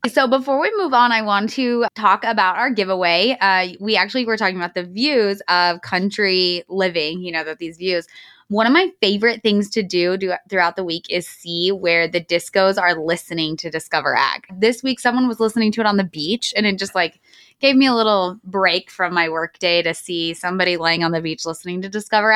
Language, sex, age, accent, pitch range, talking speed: English, female, 20-39, American, 180-240 Hz, 215 wpm